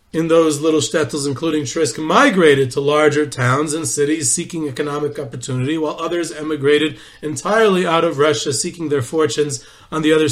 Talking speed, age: 165 wpm, 40-59